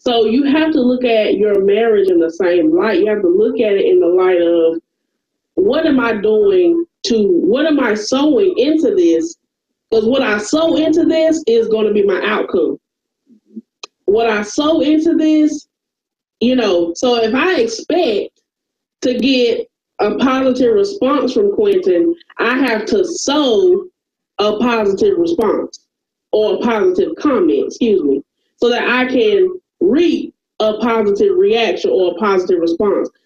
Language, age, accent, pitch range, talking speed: English, 30-49, American, 230-360 Hz, 155 wpm